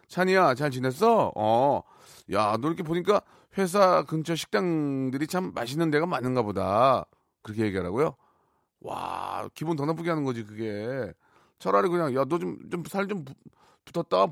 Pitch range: 140-195 Hz